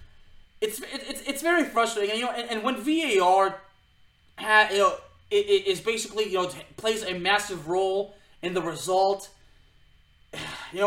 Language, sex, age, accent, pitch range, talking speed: English, male, 20-39, American, 165-215 Hz, 155 wpm